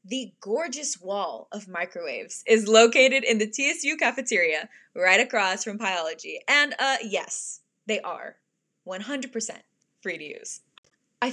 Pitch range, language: 200-295 Hz, English